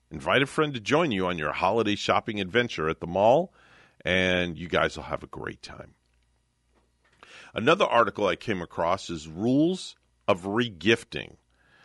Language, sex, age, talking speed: English, male, 50-69, 155 wpm